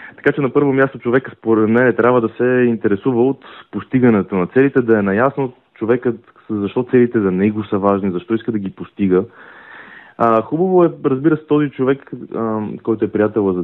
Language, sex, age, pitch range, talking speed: Bulgarian, male, 30-49, 100-125 Hz, 185 wpm